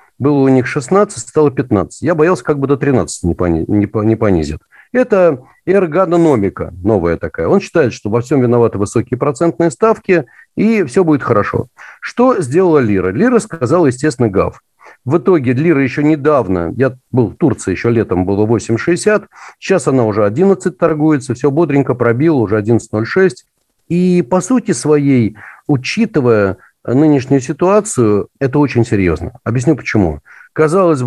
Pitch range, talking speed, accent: 115-170 Hz, 145 wpm, native